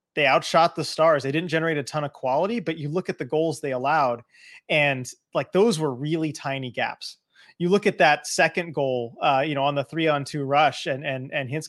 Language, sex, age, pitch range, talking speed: English, male, 30-49, 135-165 Hz, 230 wpm